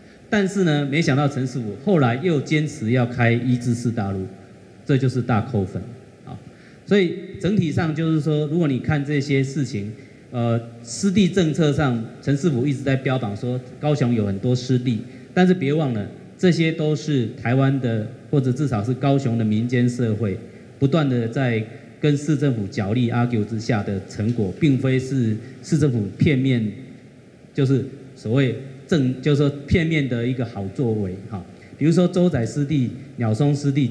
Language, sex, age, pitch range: Chinese, male, 30-49, 115-150 Hz